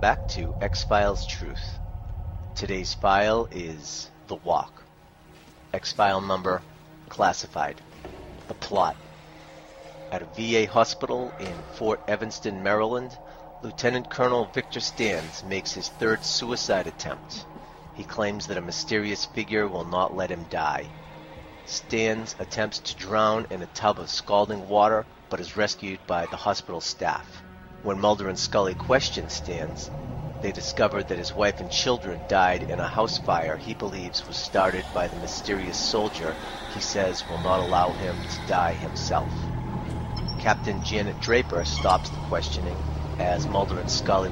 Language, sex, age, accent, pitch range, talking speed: English, male, 30-49, American, 90-105 Hz, 140 wpm